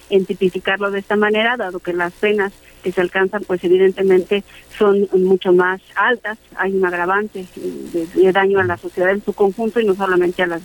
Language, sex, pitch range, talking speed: Spanish, female, 185-215 Hz, 190 wpm